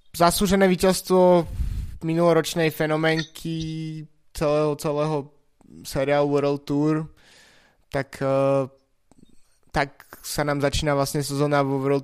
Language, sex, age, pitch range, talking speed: Slovak, male, 20-39, 135-145 Hz, 90 wpm